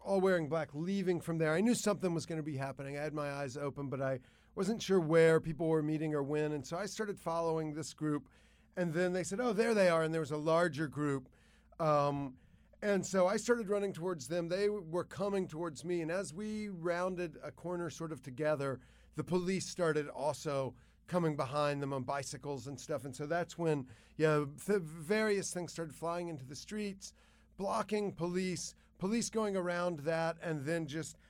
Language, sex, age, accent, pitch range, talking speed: English, male, 40-59, American, 150-185 Hz, 200 wpm